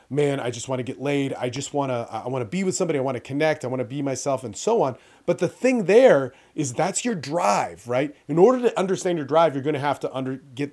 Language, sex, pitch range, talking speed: English, male, 135-170 Hz, 285 wpm